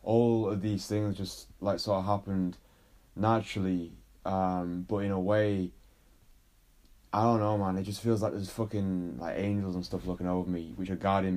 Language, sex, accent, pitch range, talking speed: English, male, British, 90-105 Hz, 185 wpm